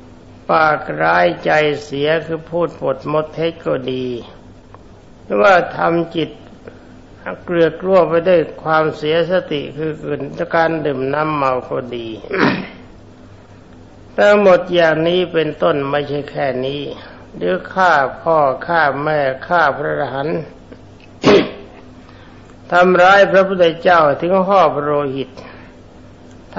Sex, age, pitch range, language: male, 60-79, 125-165 Hz, Thai